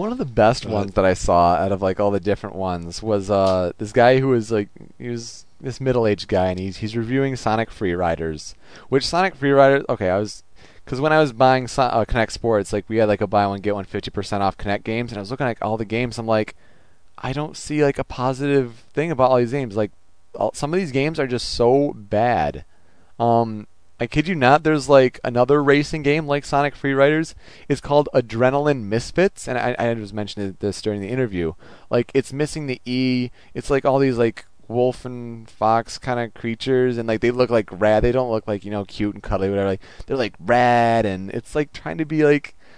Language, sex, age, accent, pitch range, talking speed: English, male, 30-49, American, 105-135 Hz, 235 wpm